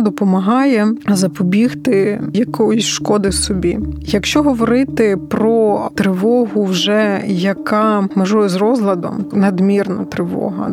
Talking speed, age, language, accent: 90 wpm, 20-39, Ukrainian, native